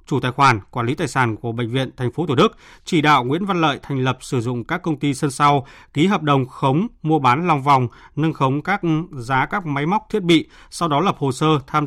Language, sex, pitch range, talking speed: Vietnamese, male, 130-155 Hz, 260 wpm